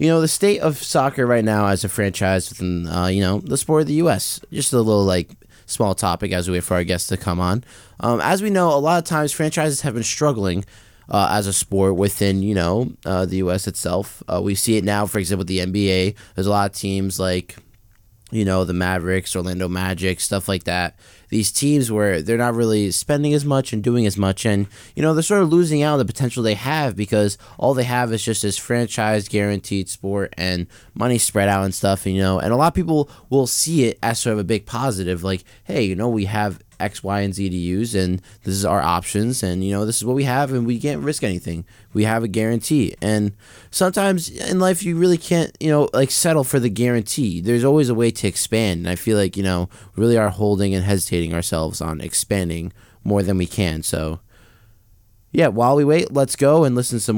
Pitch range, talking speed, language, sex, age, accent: 95-125 Hz, 235 wpm, English, male, 20-39, American